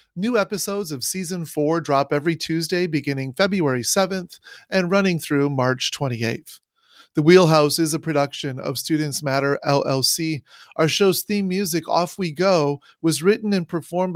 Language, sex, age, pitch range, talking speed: English, male, 30-49, 150-190 Hz, 155 wpm